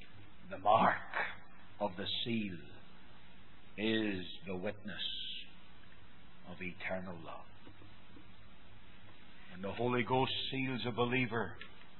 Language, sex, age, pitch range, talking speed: English, male, 60-79, 100-130 Hz, 90 wpm